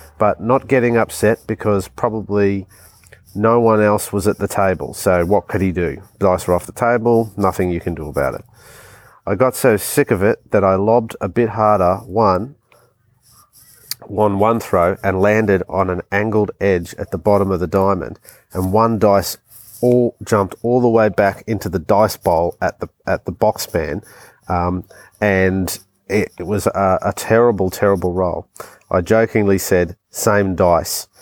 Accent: Australian